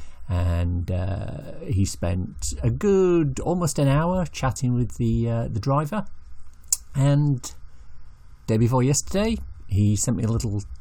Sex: male